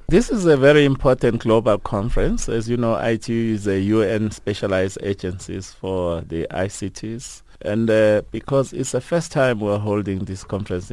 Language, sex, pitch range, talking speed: English, male, 95-115 Hz, 165 wpm